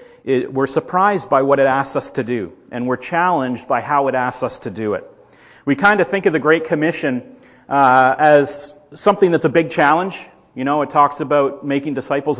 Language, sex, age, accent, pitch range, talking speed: English, male, 40-59, American, 140-170 Hz, 210 wpm